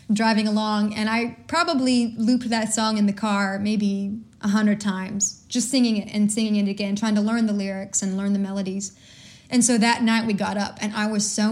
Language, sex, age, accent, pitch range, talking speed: English, female, 20-39, American, 205-240 Hz, 220 wpm